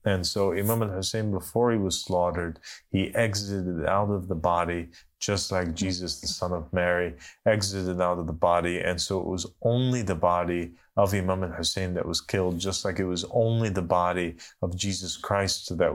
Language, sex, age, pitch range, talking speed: English, male, 30-49, 85-105 Hz, 190 wpm